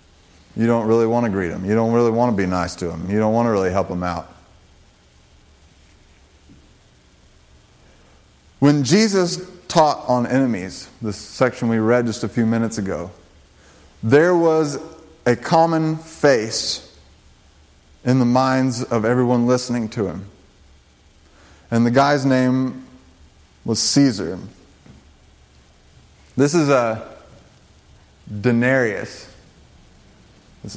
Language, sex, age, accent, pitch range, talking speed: English, male, 30-49, American, 80-125 Hz, 125 wpm